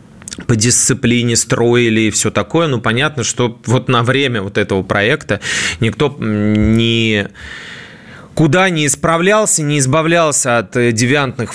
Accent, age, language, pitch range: native, 20-39, Russian, 105-140 Hz